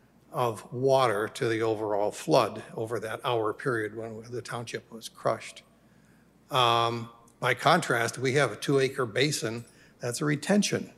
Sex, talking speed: male, 150 wpm